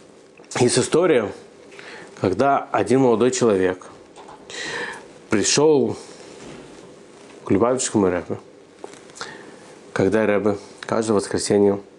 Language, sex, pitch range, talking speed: Russian, male, 100-130 Hz, 70 wpm